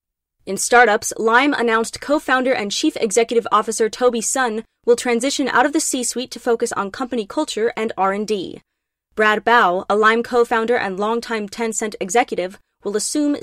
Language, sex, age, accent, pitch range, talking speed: English, female, 20-39, American, 195-240 Hz, 155 wpm